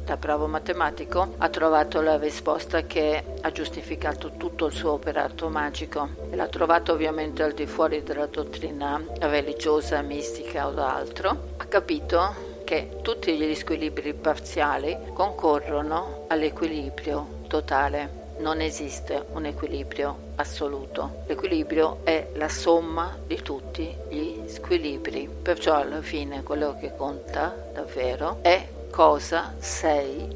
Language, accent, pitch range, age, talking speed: Italian, native, 145-165 Hz, 50-69, 125 wpm